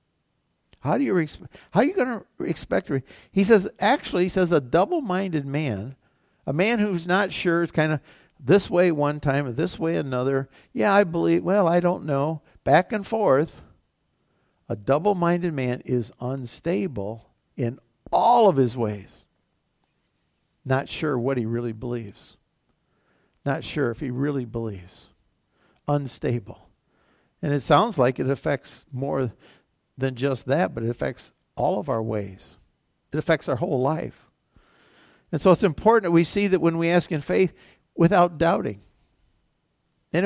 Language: English